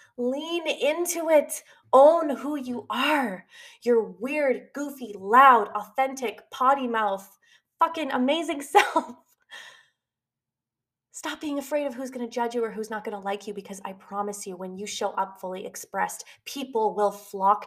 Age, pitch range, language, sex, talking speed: 20-39, 195-270 Hz, English, female, 155 wpm